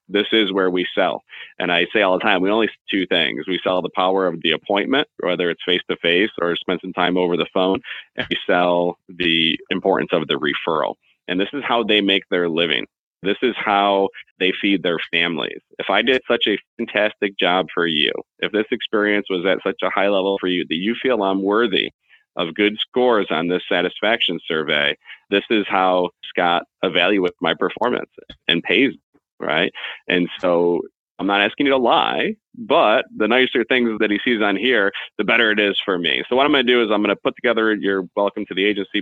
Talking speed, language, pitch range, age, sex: 210 wpm, English, 90-105 Hz, 40-59, male